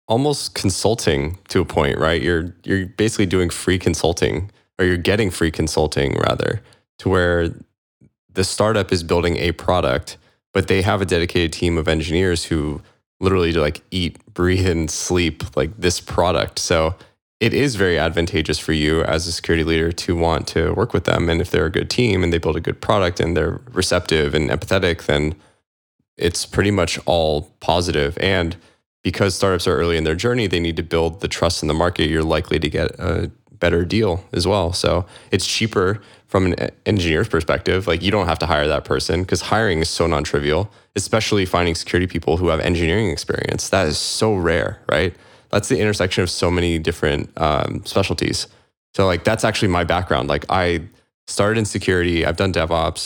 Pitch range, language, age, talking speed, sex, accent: 80-95 Hz, English, 20-39, 190 wpm, male, American